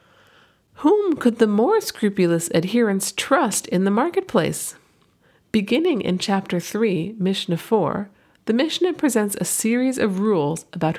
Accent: American